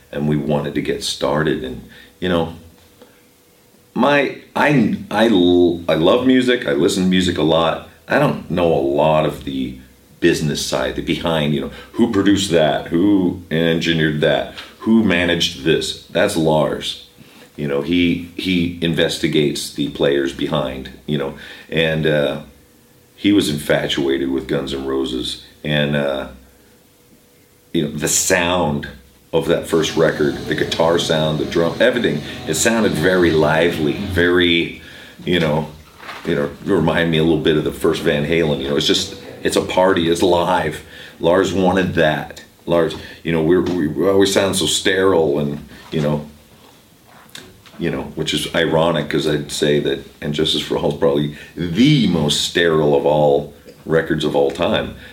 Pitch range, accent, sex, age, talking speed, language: 70-85 Hz, American, male, 40-59, 160 wpm, English